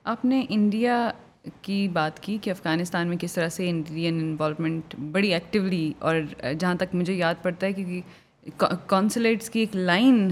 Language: Urdu